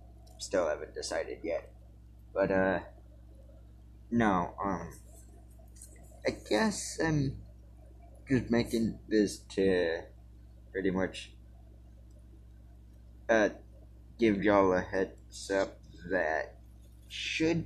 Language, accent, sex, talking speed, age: English, American, male, 85 wpm, 20-39